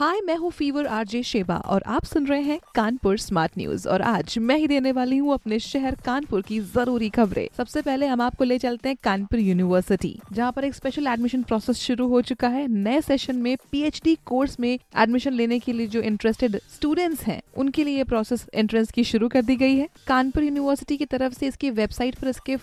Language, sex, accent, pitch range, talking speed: Hindi, female, native, 225-270 Hz, 210 wpm